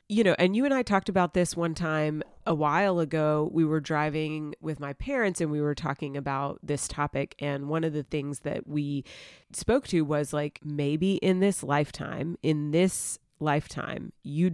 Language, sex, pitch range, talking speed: English, female, 150-175 Hz, 190 wpm